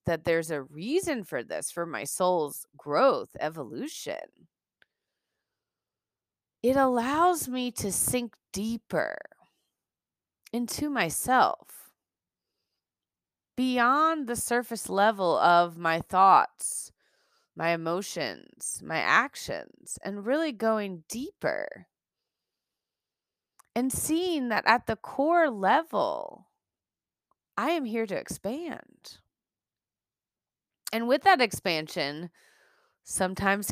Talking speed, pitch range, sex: 90 wpm, 190-265 Hz, female